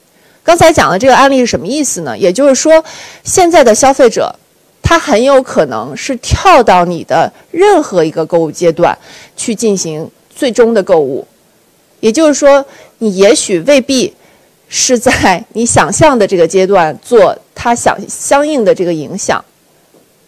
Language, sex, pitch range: Chinese, female, 185-265 Hz